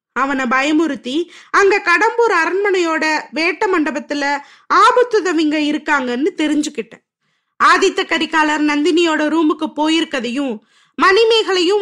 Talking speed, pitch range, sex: 80 wpm, 285-360 Hz, female